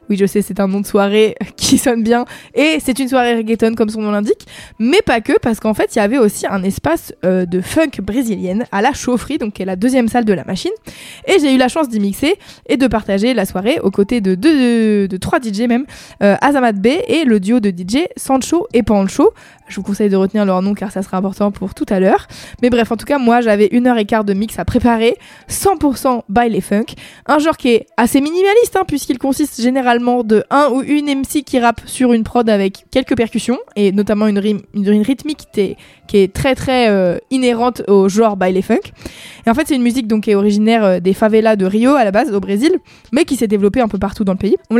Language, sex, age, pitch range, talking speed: French, female, 20-39, 205-260 Hz, 250 wpm